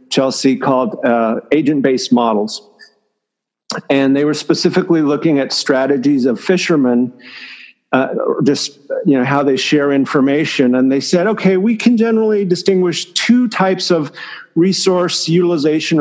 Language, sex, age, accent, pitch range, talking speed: English, male, 50-69, American, 140-190 Hz, 130 wpm